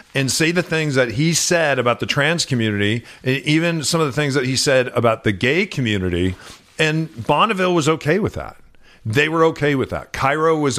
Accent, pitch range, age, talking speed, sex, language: American, 120-165 Hz, 40-59, 200 wpm, male, English